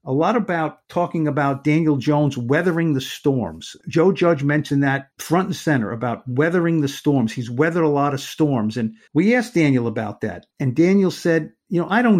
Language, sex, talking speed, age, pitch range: English, male, 195 wpm, 50-69, 135-170 Hz